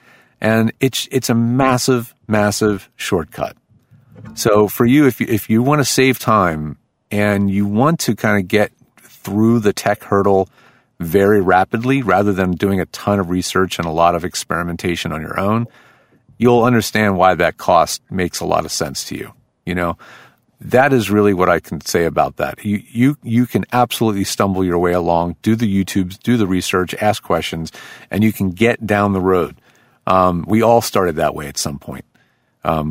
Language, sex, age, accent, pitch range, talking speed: English, male, 40-59, American, 90-110 Hz, 190 wpm